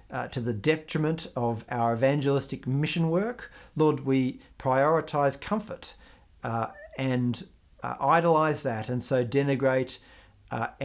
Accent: Australian